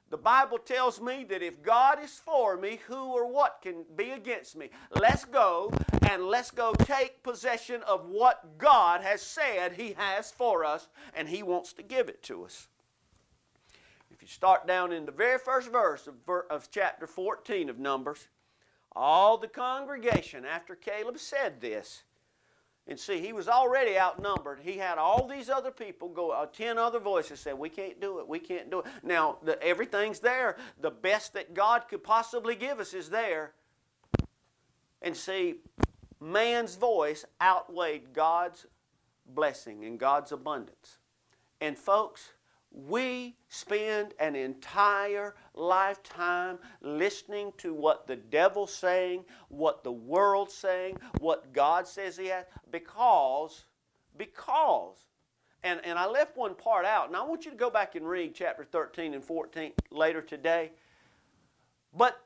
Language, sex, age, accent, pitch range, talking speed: English, male, 50-69, American, 170-240 Hz, 150 wpm